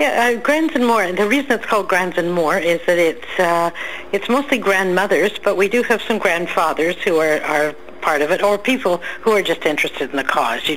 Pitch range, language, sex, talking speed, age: 165-205 Hz, English, female, 235 wpm, 60-79